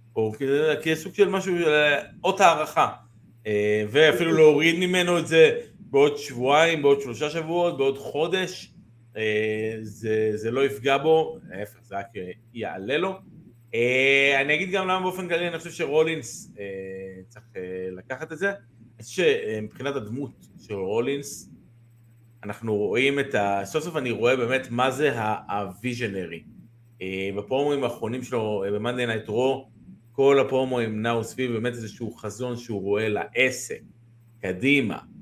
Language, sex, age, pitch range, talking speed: Hebrew, male, 30-49, 105-145 Hz, 135 wpm